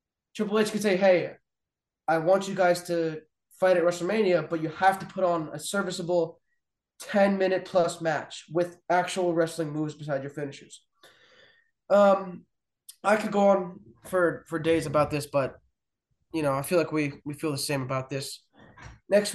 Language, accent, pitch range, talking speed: English, American, 160-190 Hz, 170 wpm